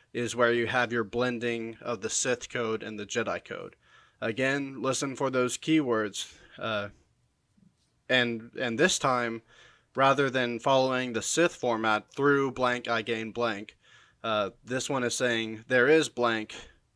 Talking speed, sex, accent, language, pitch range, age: 150 wpm, male, American, English, 115-135 Hz, 20-39